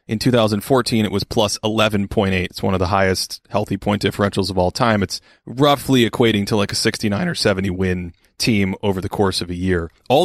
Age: 30-49